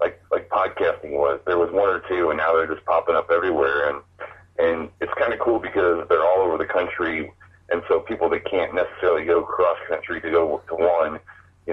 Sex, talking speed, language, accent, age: male, 215 wpm, English, American, 40-59